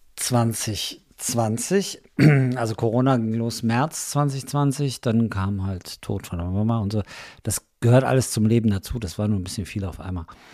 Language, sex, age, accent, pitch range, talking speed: German, male, 50-69, German, 105-125 Hz, 170 wpm